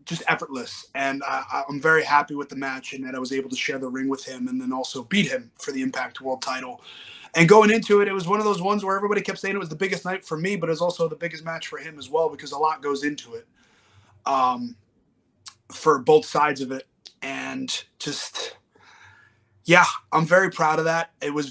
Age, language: 20-39, English